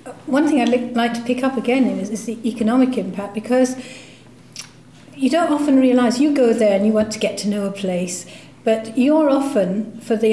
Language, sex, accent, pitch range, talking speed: English, female, British, 210-250 Hz, 210 wpm